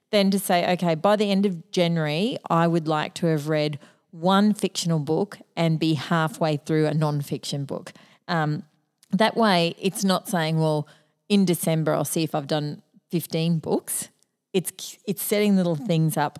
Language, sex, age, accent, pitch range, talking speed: English, female, 40-59, Australian, 160-195 Hz, 170 wpm